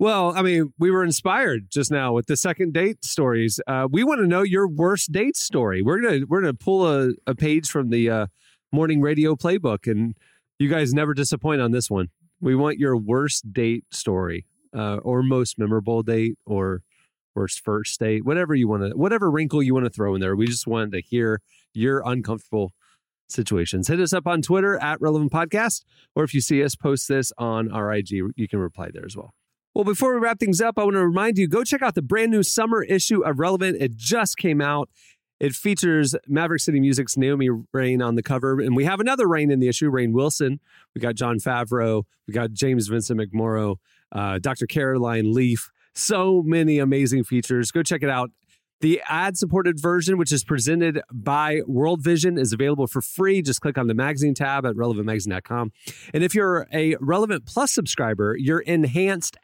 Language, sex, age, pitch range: English, male, 30-49, 120-170 Hz